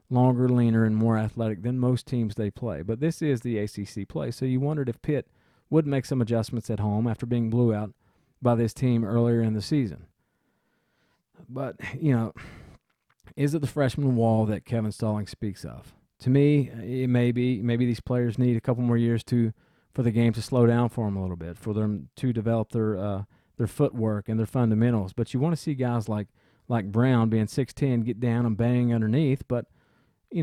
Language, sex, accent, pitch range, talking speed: English, male, American, 110-130 Hz, 205 wpm